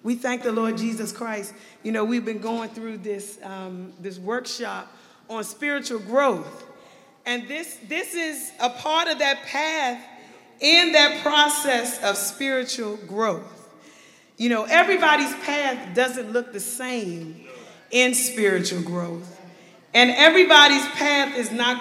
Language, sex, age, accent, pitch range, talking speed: English, female, 40-59, American, 220-305 Hz, 135 wpm